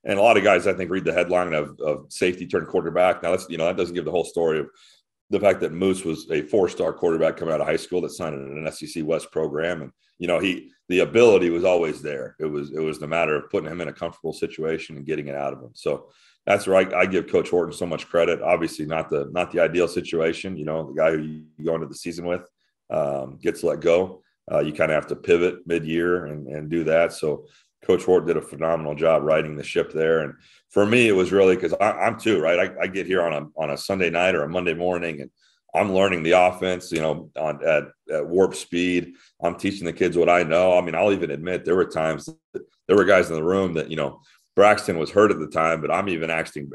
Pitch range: 80-95 Hz